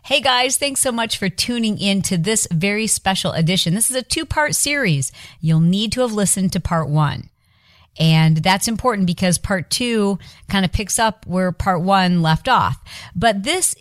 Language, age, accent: English, 40-59, American